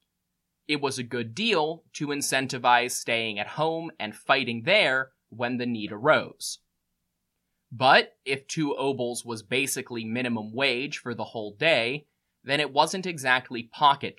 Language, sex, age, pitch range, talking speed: English, male, 20-39, 115-150 Hz, 145 wpm